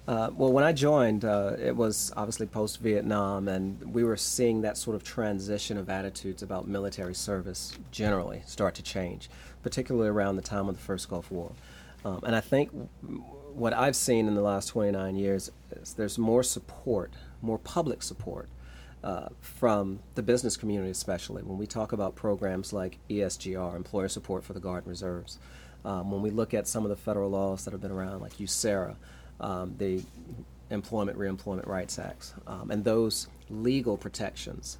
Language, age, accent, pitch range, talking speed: English, 40-59, American, 95-110 Hz, 175 wpm